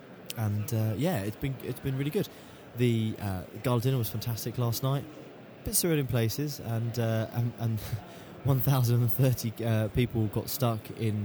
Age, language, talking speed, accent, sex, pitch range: 20-39, English, 170 wpm, British, male, 105-125 Hz